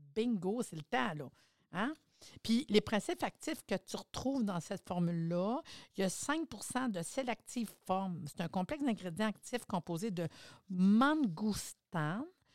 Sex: female